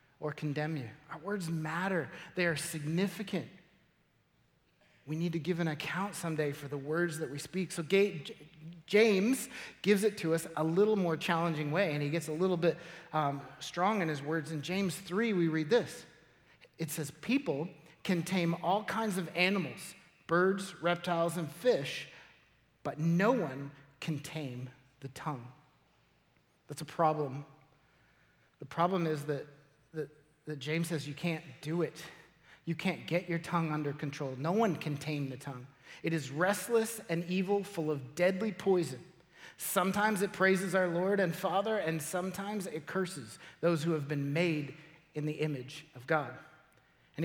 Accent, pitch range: American, 150-185 Hz